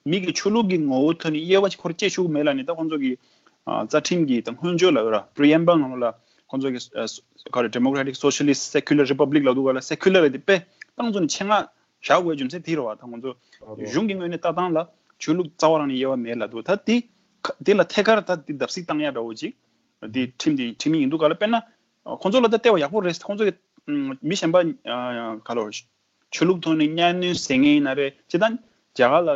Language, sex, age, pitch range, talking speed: English, male, 30-49, 130-185 Hz, 50 wpm